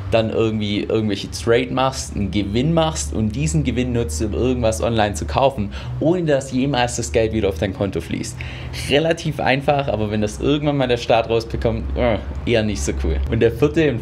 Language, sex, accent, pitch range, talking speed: German, male, German, 95-130 Hz, 195 wpm